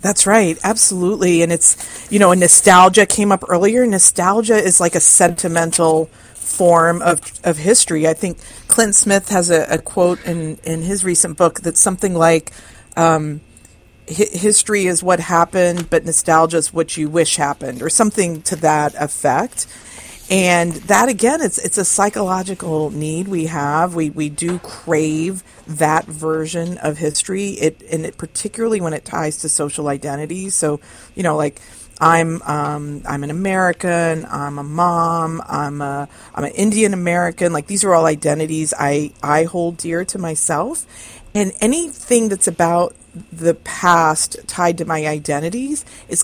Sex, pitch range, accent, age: female, 155-185 Hz, American, 40-59